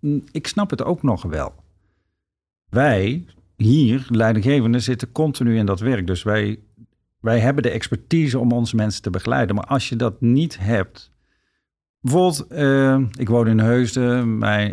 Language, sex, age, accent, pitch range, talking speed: Dutch, male, 50-69, Dutch, 95-125 Hz, 150 wpm